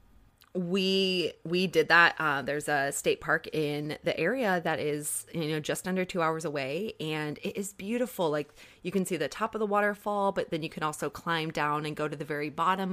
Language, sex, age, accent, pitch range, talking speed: English, female, 20-39, American, 150-195 Hz, 220 wpm